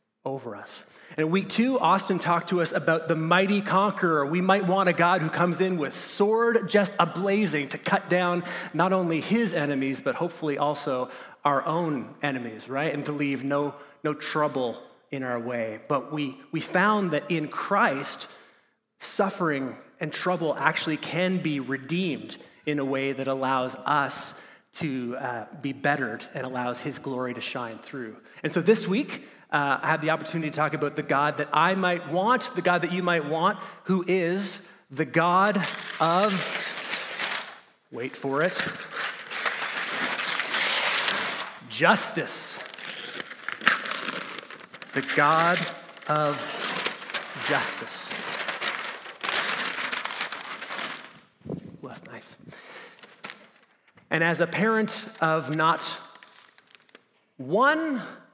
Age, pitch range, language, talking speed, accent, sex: 30-49, 145-185 Hz, English, 130 wpm, American, male